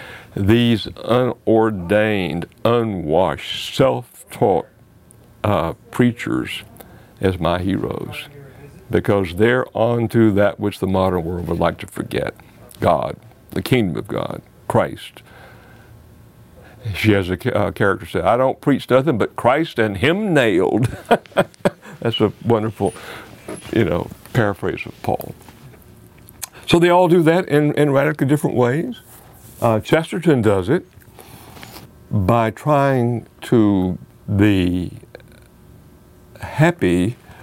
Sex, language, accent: male, English, American